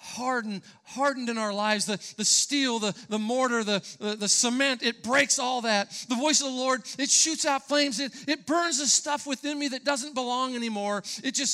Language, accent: English, American